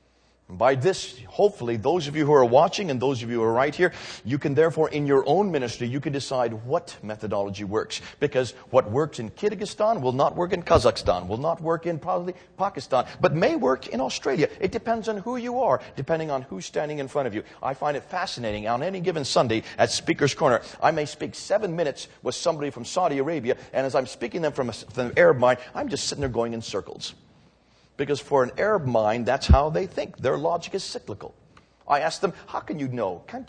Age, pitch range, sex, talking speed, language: 40-59, 125-200 Hz, male, 225 wpm, English